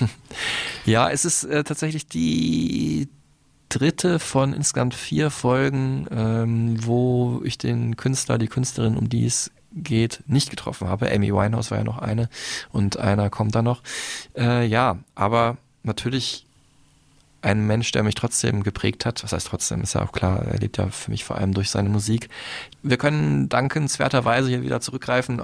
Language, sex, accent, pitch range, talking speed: German, male, German, 100-125 Hz, 165 wpm